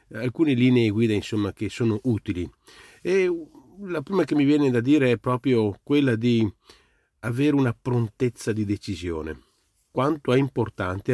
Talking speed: 145 wpm